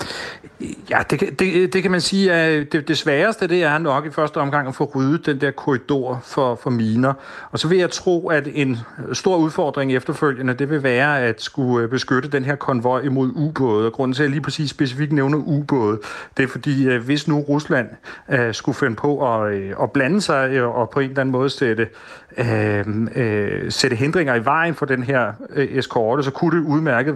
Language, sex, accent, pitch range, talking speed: Danish, male, native, 120-145 Hz, 205 wpm